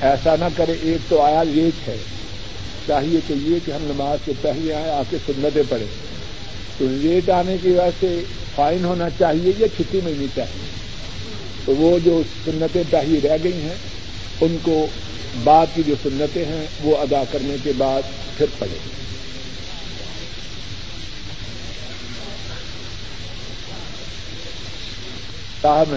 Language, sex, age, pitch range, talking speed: Urdu, male, 50-69, 110-150 Hz, 130 wpm